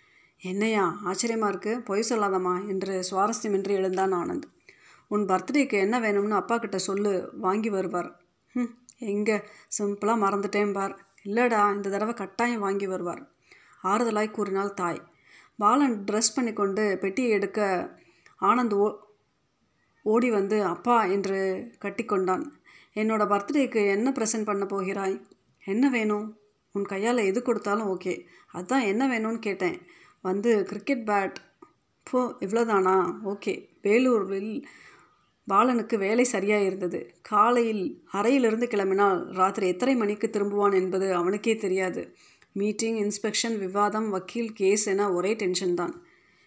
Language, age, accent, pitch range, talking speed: Tamil, 30-49, native, 190-220 Hz, 115 wpm